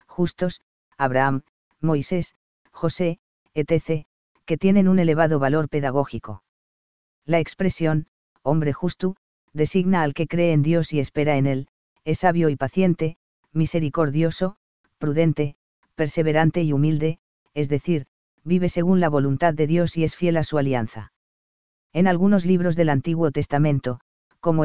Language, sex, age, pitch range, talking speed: Spanish, female, 40-59, 145-170 Hz, 135 wpm